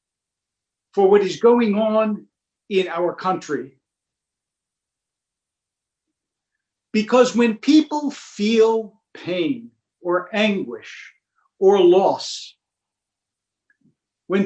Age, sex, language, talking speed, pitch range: 50-69, male, English, 75 wpm, 155-235 Hz